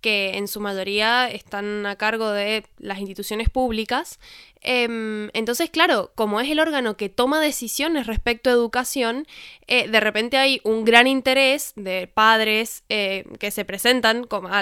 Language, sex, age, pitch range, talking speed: Spanish, female, 10-29, 220-255 Hz, 145 wpm